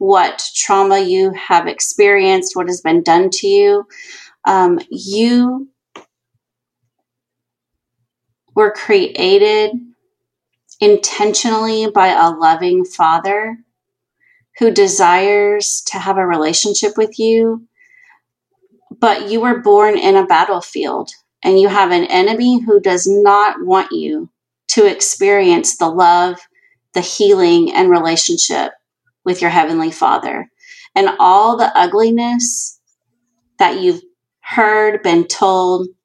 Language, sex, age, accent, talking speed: English, female, 30-49, American, 110 wpm